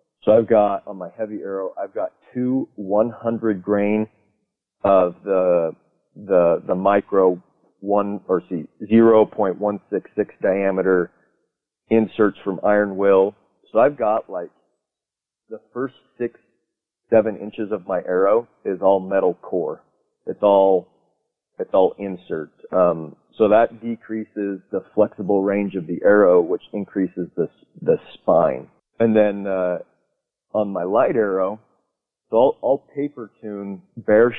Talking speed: 130 wpm